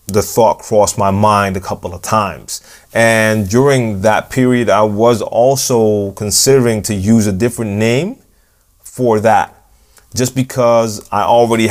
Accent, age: American, 30-49